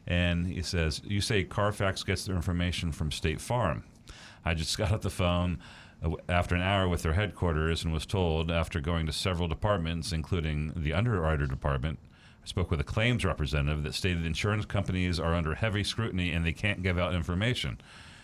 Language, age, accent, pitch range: English, 40-59, American, 75-95 Hz